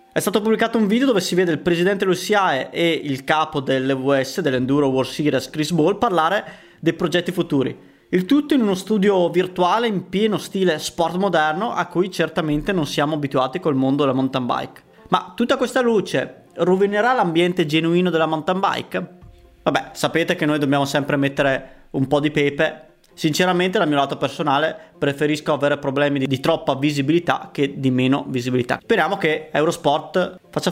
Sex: male